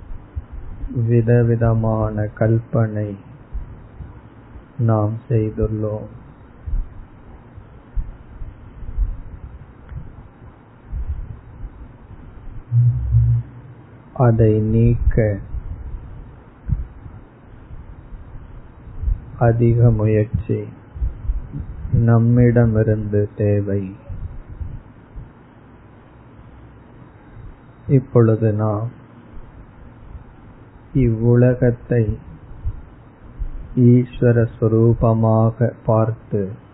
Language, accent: Tamil, native